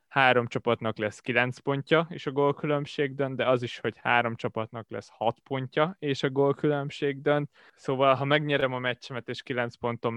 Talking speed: 175 wpm